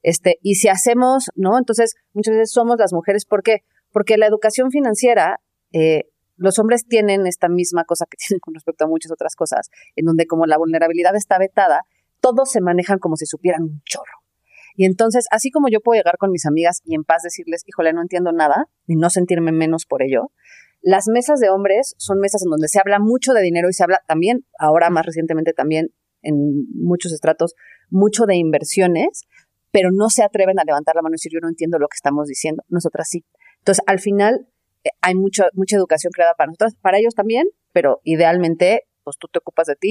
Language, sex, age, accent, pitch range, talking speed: Spanish, female, 30-49, Mexican, 165-205 Hz, 205 wpm